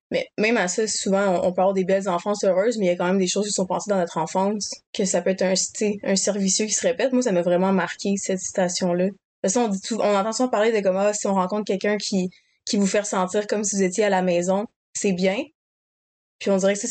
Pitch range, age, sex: 185-210 Hz, 20-39, female